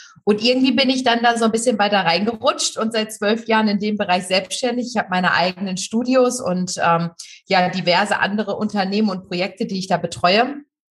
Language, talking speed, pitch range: German, 200 wpm, 175-230 Hz